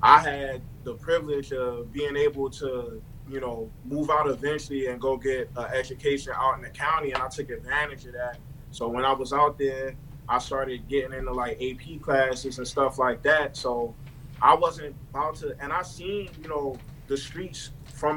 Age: 20-39